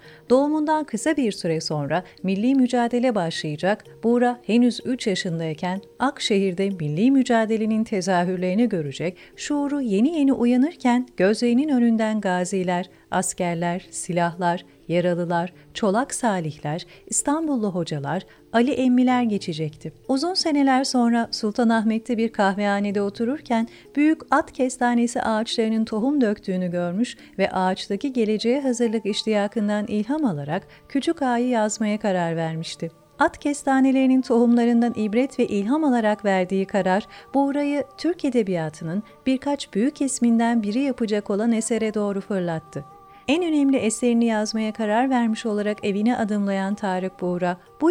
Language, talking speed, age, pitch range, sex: Turkish, 115 wpm, 40-59, 185-250 Hz, female